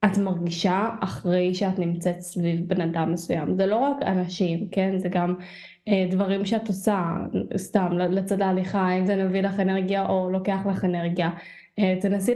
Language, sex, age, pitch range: Hebrew, female, 10-29, 180-205 Hz